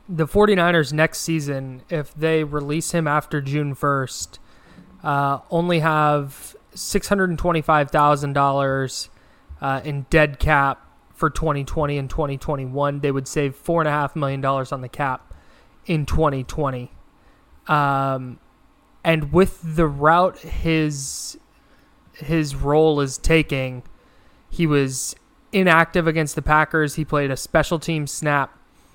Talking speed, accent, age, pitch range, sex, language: 110 wpm, American, 20-39, 140-165 Hz, male, English